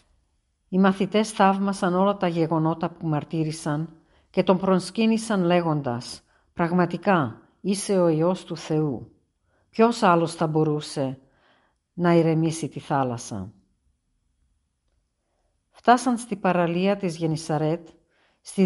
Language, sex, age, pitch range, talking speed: Greek, female, 50-69, 155-200 Hz, 105 wpm